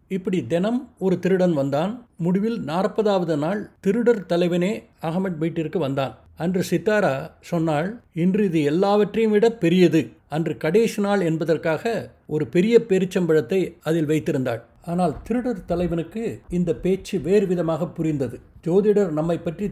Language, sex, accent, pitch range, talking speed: Tamil, male, native, 155-195 Hz, 125 wpm